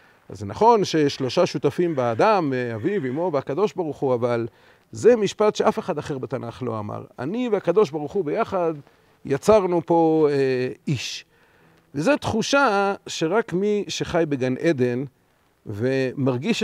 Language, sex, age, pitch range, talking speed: Hebrew, male, 40-59, 130-190 Hz, 135 wpm